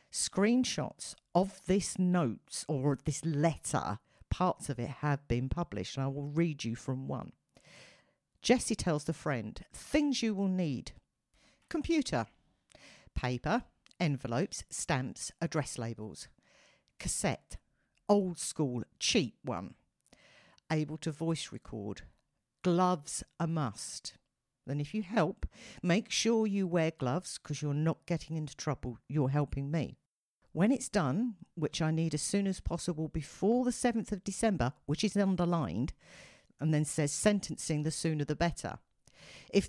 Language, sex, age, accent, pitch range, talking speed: English, female, 50-69, British, 145-190 Hz, 140 wpm